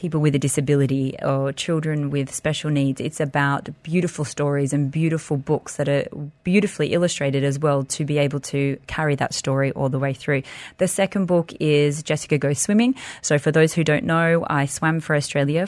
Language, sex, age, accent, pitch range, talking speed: English, female, 30-49, Australian, 140-165 Hz, 190 wpm